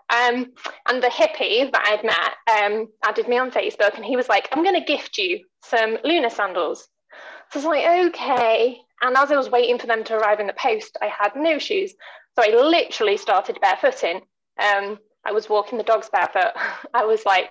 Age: 10-29